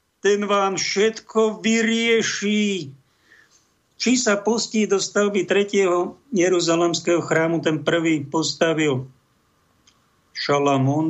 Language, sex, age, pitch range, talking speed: Slovak, male, 50-69, 140-175 Hz, 85 wpm